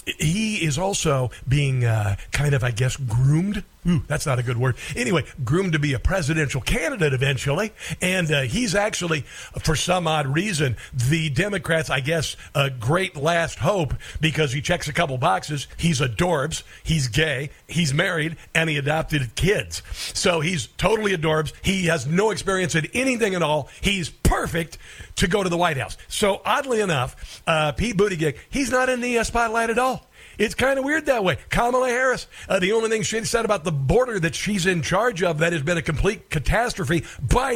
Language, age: English, 50-69